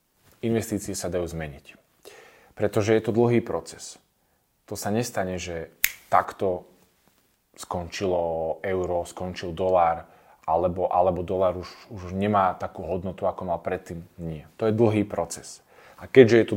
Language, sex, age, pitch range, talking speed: Slovak, male, 20-39, 95-110 Hz, 140 wpm